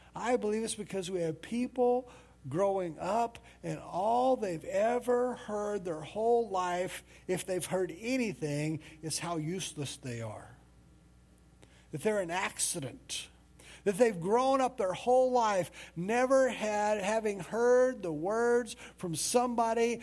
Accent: American